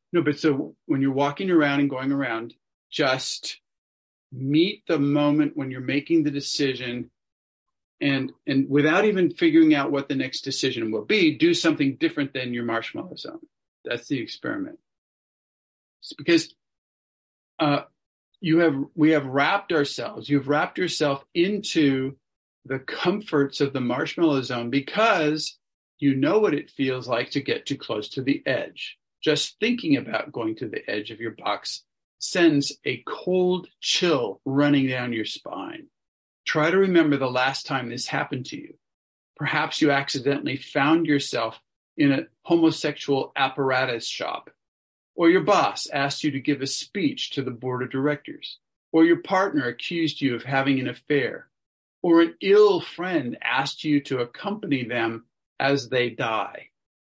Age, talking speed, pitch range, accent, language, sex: 40-59, 155 wpm, 135-170 Hz, American, English, male